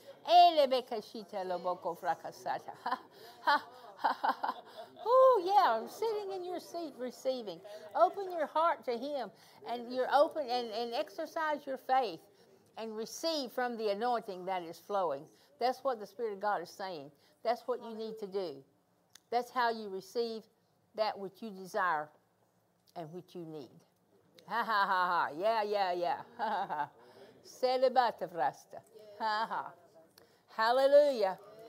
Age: 60-79